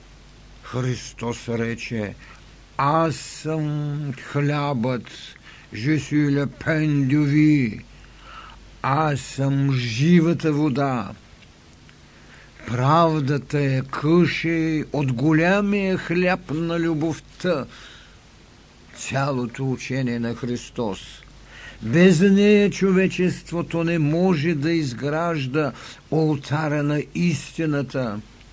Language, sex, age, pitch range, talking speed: Bulgarian, male, 60-79, 130-160 Hz, 70 wpm